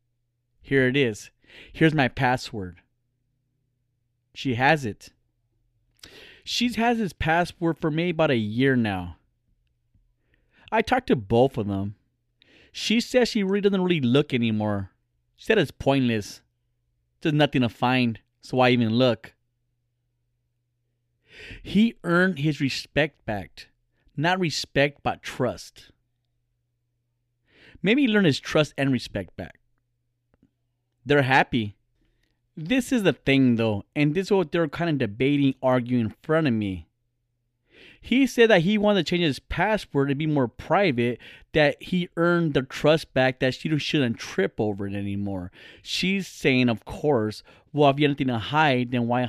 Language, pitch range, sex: English, 115-145 Hz, male